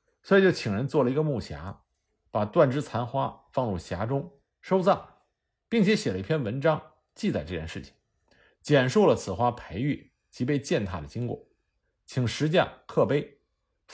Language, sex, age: Chinese, male, 50-69